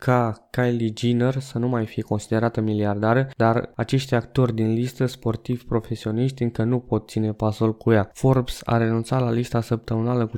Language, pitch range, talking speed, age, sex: Romanian, 110-125 Hz, 170 wpm, 20-39, male